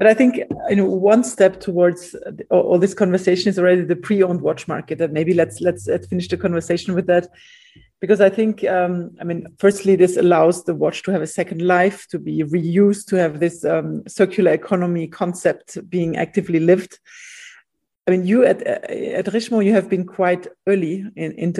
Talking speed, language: 190 wpm, English